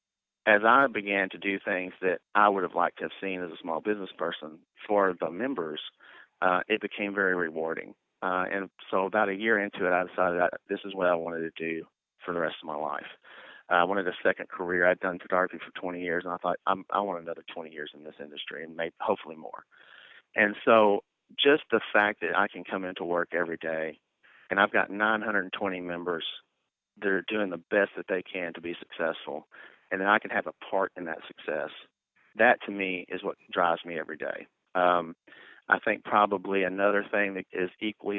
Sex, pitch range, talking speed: male, 90-100 Hz, 210 wpm